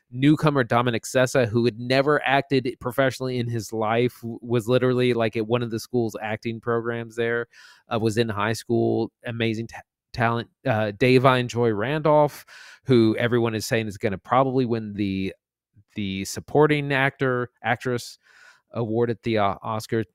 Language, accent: English, American